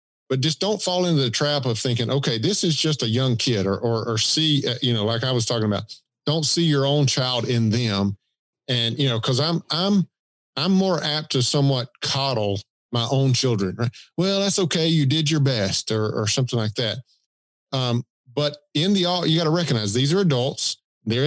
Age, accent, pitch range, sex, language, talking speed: 50-69, American, 115-150 Hz, male, English, 210 wpm